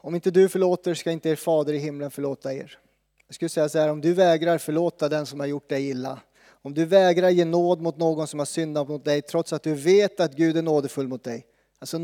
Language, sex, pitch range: Swedish, male, 145-180 Hz